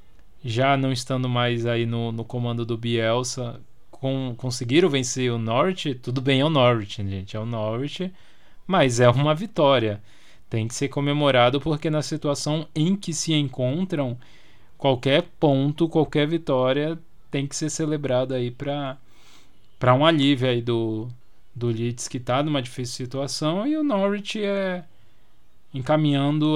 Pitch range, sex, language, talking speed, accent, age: 125-160 Hz, male, Portuguese, 145 wpm, Brazilian, 20-39